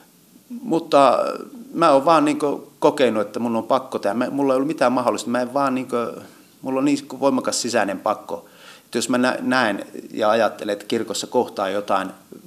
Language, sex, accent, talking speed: Finnish, male, native, 190 wpm